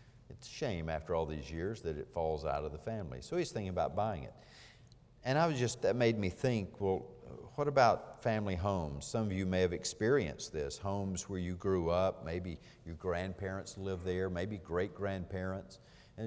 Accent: American